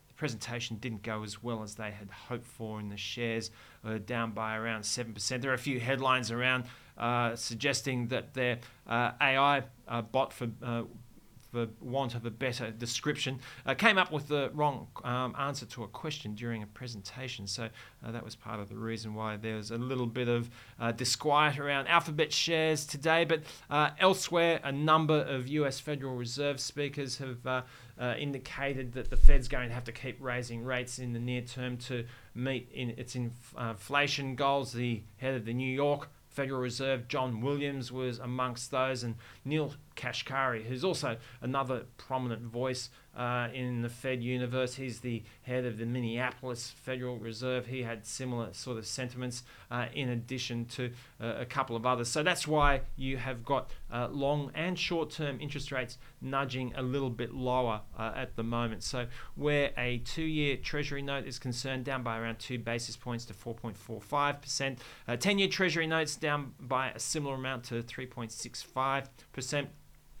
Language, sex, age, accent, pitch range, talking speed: English, male, 30-49, Australian, 120-140 Hz, 175 wpm